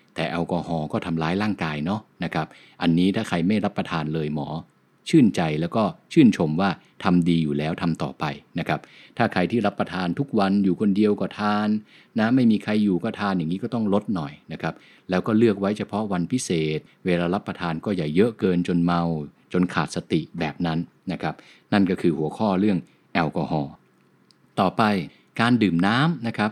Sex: male